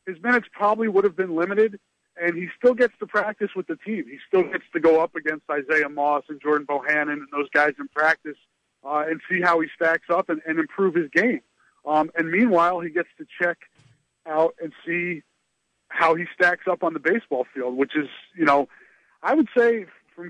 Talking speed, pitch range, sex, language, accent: 210 wpm, 155-195 Hz, male, English, American